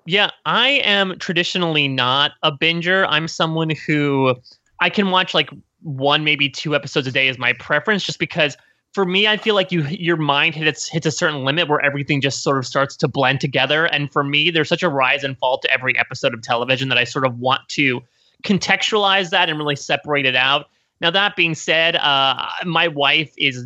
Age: 20-39